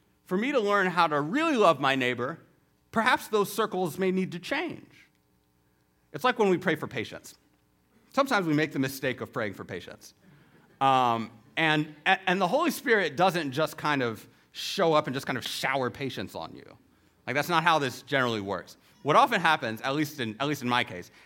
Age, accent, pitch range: 30-49, American, 120-175 Hz